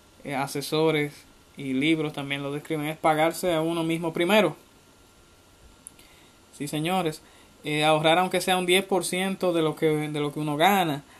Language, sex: Spanish, male